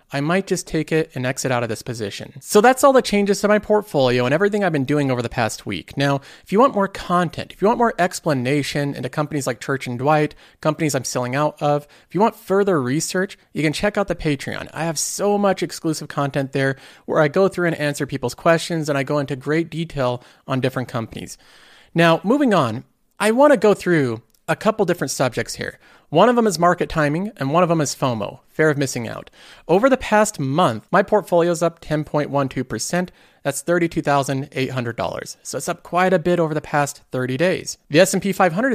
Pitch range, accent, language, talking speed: 140-190 Hz, American, English, 215 wpm